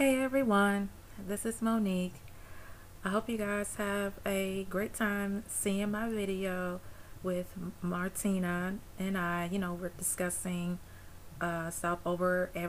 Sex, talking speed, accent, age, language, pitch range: female, 130 wpm, American, 30-49, English, 160-190 Hz